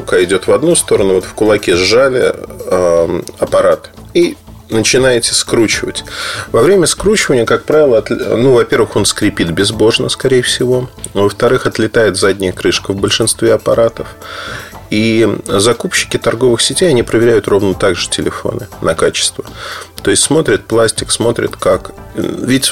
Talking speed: 130 wpm